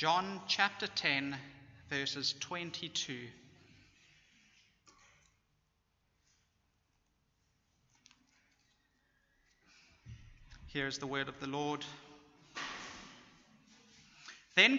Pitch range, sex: 140-235 Hz, male